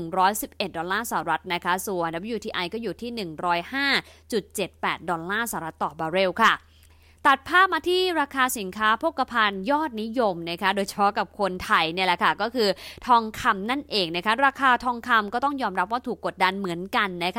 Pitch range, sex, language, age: 185-240 Hz, female, English, 20-39